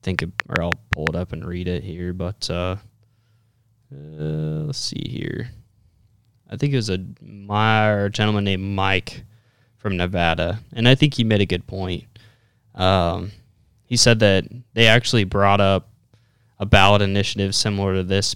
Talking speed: 165 wpm